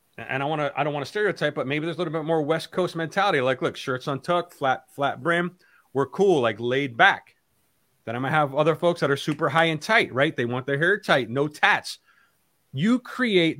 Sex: male